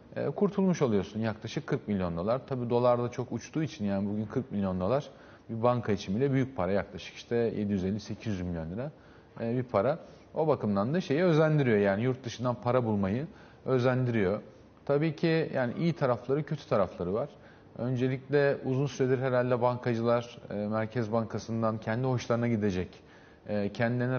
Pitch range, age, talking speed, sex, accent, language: 105-125 Hz, 40-59, 145 wpm, male, native, Turkish